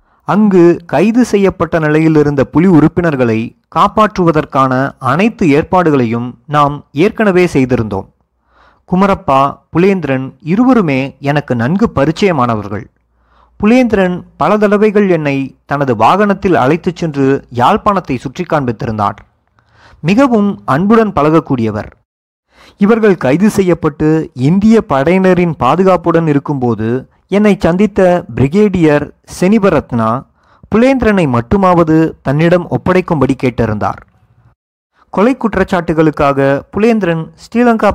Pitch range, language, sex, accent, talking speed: 130-190 Hz, Tamil, male, native, 85 wpm